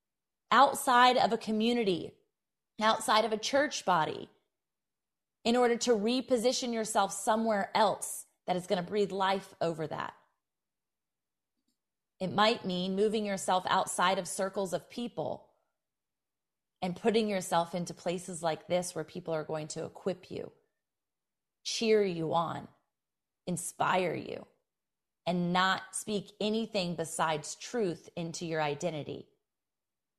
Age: 30-49